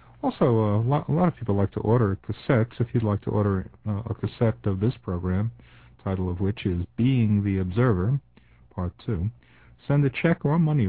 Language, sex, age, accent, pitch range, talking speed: English, male, 50-69, American, 95-120 Hz, 205 wpm